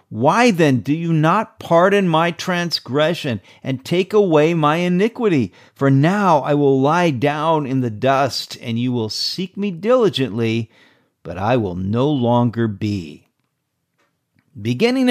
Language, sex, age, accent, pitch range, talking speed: English, male, 50-69, American, 115-165 Hz, 140 wpm